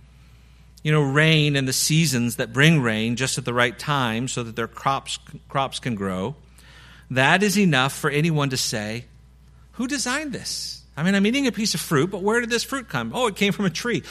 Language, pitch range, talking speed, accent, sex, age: English, 145-220 Hz, 215 wpm, American, male, 50-69